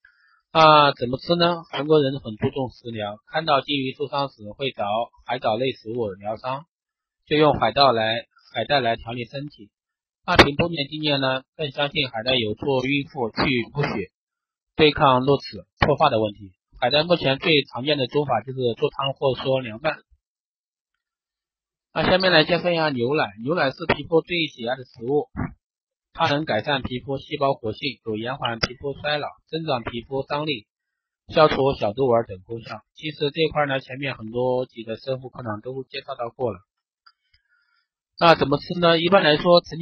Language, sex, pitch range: Chinese, male, 120-150 Hz